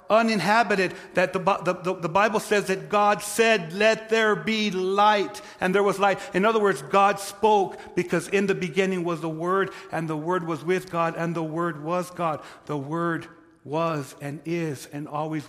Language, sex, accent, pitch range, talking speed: English, male, American, 130-170 Hz, 185 wpm